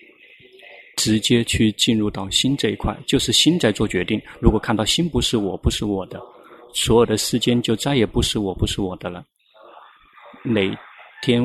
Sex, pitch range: male, 105-120 Hz